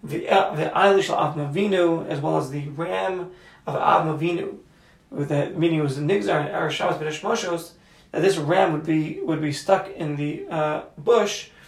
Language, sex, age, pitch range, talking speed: English, male, 30-49, 150-185 Hz, 170 wpm